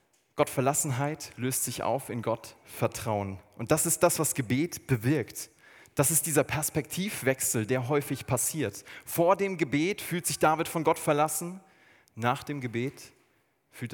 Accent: German